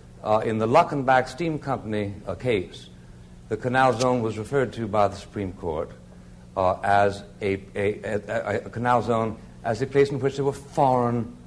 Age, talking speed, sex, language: 60-79, 180 wpm, male, English